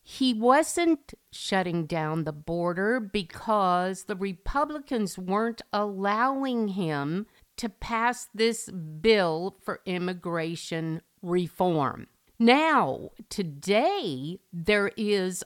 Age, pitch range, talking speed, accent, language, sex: 50-69, 165-230 Hz, 90 wpm, American, English, female